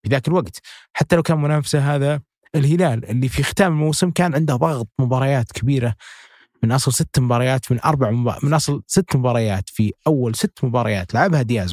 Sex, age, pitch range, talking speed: male, 30-49, 115-150 Hz, 175 wpm